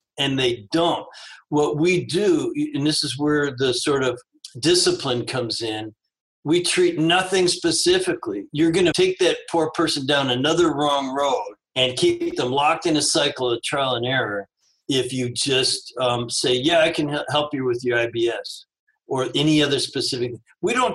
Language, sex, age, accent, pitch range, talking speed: English, male, 60-79, American, 130-215 Hz, 175 wpm